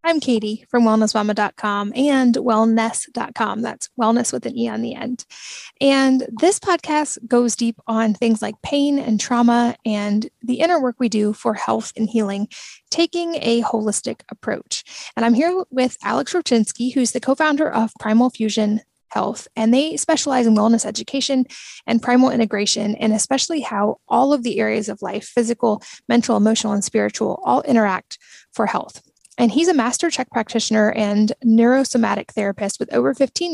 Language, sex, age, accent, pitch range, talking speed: English, female, 10-29, American, 220-255 Hz, 165 wpm